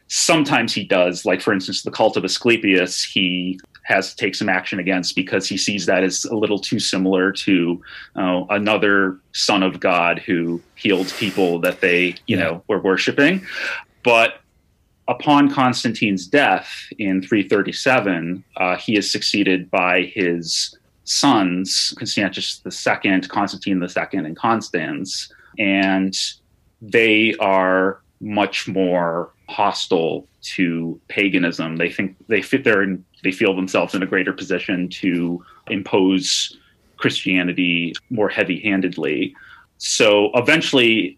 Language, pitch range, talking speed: English, 90-100 Hz, 130 wpm